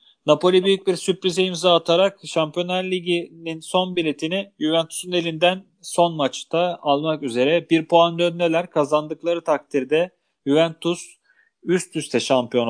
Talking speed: 120 wpm